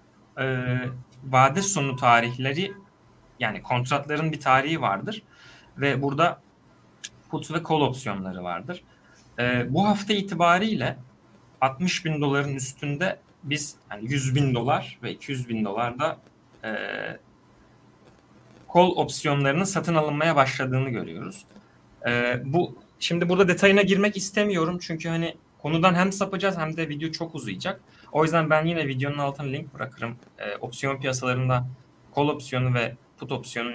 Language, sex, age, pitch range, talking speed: Turkish, male, 30-49, 125-165 Hz, 130 wpm